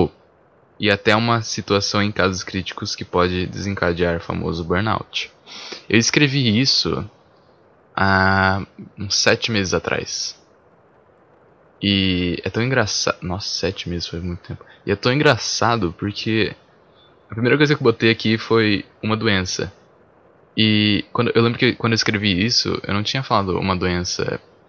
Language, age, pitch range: Portuguese, 10-29, 95-110 Hz